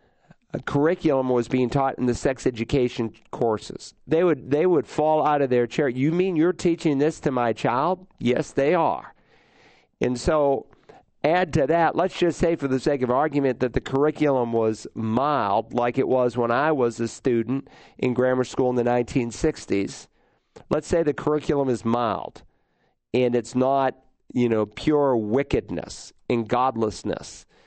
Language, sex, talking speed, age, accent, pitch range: English, male, 175 wpm, 50-69, American, 120-145 Hz